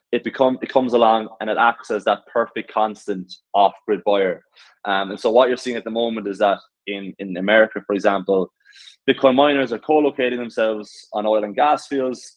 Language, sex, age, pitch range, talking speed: English, male, 20-39, 100-120 Hz, 195 wpm